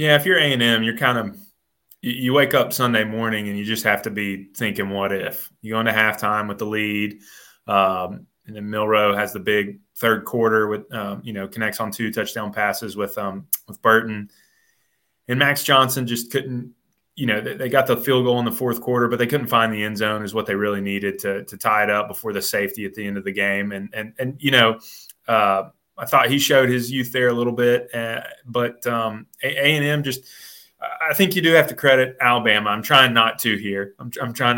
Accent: American